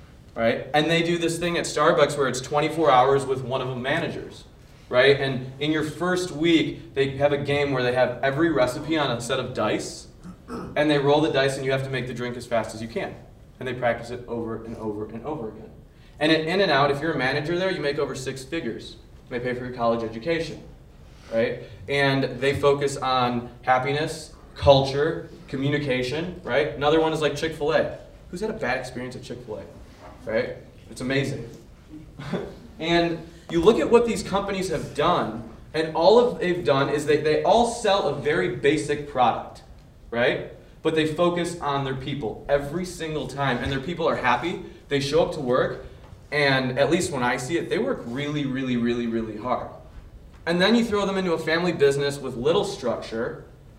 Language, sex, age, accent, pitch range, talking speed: English, male, 20-39, American, 125-165 Hz, 195 wpm